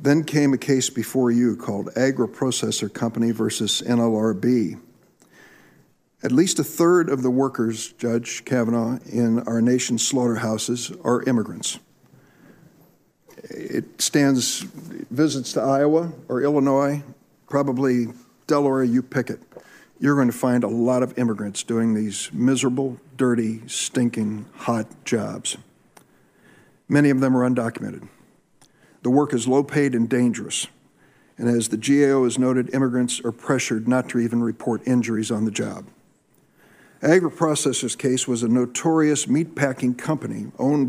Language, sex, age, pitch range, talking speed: English, male, 60-79, 120-140 Hz, 130 wpm